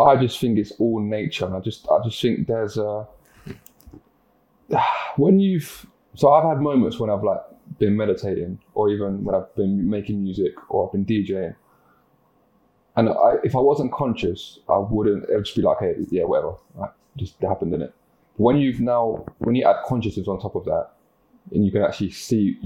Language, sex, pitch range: English, male, 100-140 Hz